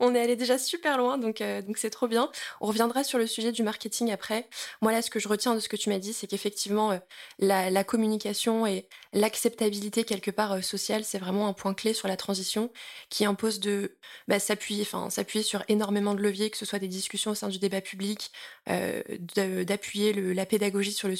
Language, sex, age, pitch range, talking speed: French, female, 20-39, 200-225 Hz, 230 wpm